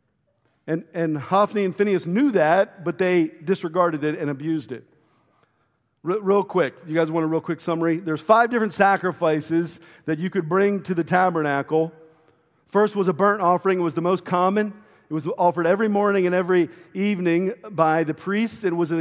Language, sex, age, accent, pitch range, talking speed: English, male, 50-69, American, 160-195 Hz, 185 wpm